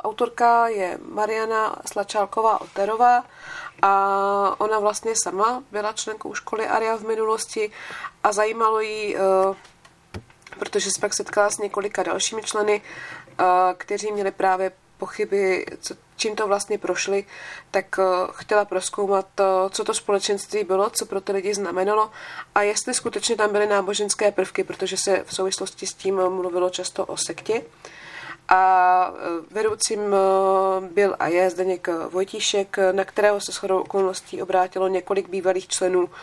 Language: Czech